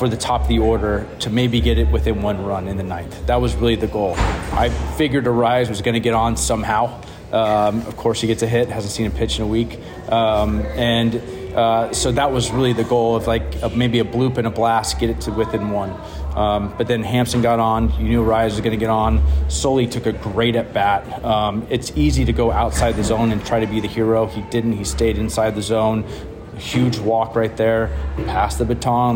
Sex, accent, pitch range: male, American, 105-115 Hz